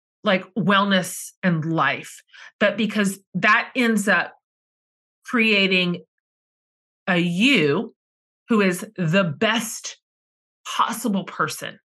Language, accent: English, American